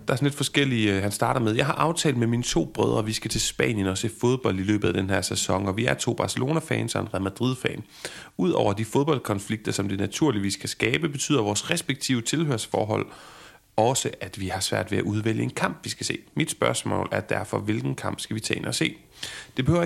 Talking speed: 235 wpm